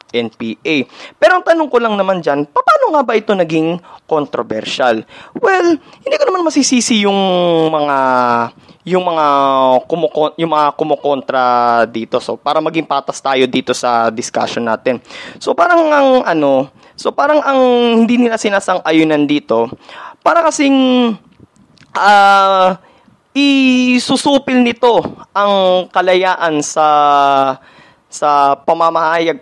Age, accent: 20-39, native